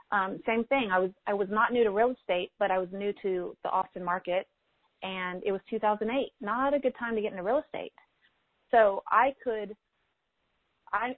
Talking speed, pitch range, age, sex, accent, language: 200 wpm, 190-235 Hz, 30-49, female, American, English